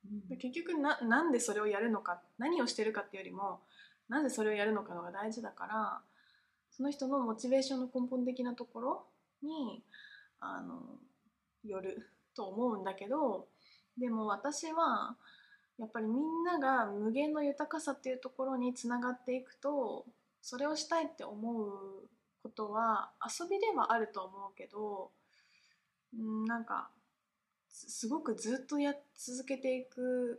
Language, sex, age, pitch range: Japanese, female, 20-39, 210-280 Hz